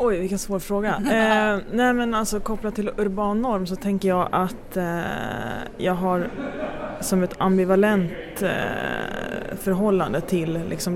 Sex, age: female, 20-39